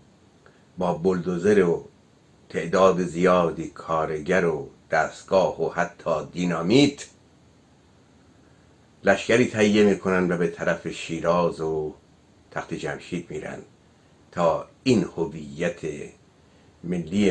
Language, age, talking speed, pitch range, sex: Persian, 60-79, 95 wpm, 80-95 Hz, male